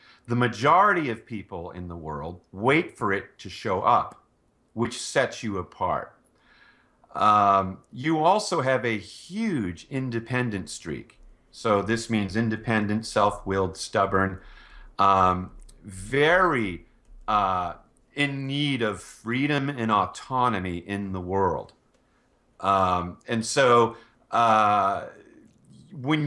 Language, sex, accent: English, male, American